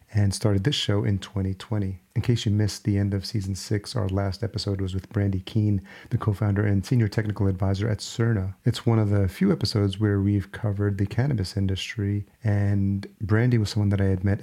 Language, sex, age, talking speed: English, male, 40-59, 210 wpm